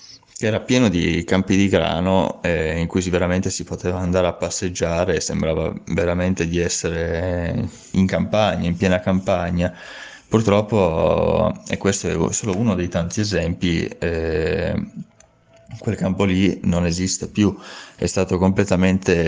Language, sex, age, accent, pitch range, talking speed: Italian, male, 20-39, native, 85-95 Hz, 135 wpm